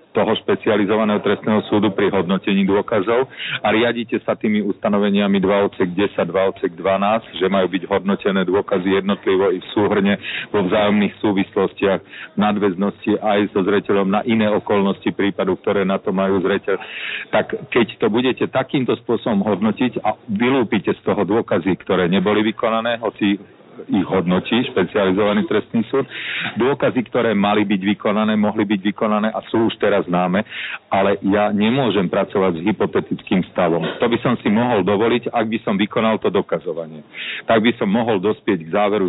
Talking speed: 155 wpm